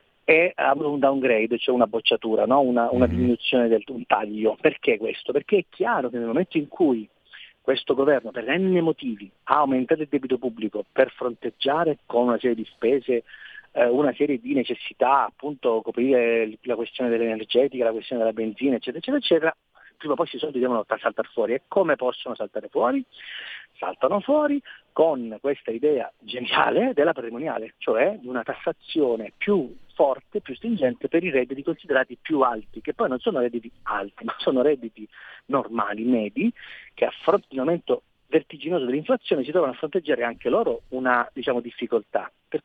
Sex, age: male, 40-59